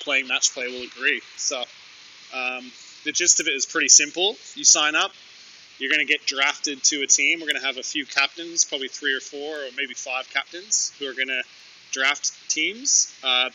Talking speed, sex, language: 210 wpm, male, English